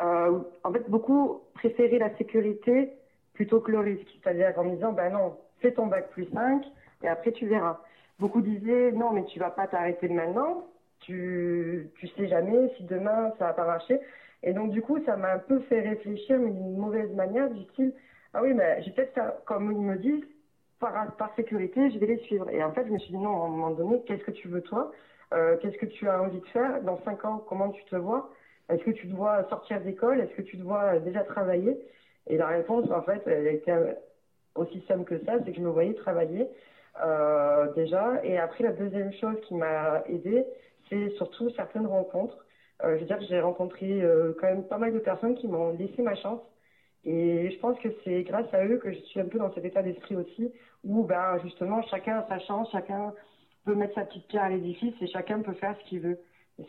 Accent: French